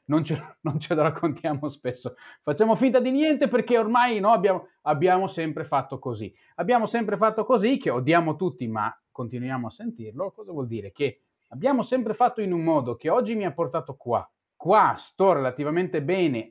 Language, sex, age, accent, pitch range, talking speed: Italian, male, 30-49, native, 120-170 Hz, 185 wpm